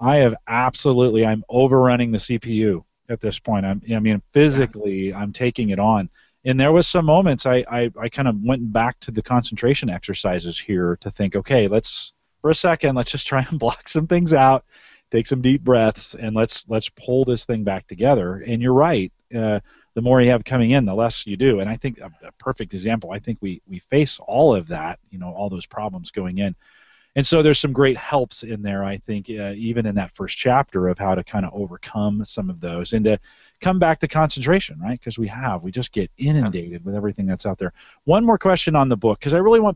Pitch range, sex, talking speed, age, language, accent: 100-135 Hz, male, 230 wpm, 40-59, English, American